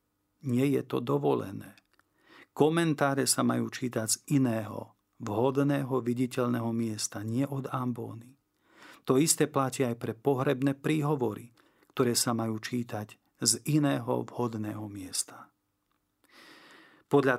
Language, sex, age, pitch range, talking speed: Slovak, male, 40-59, 115-140 Hz, 110 wpm